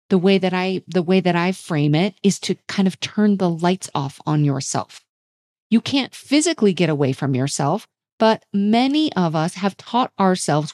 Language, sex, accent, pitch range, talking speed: English, female, American, 165-220 Hz, 190 wpm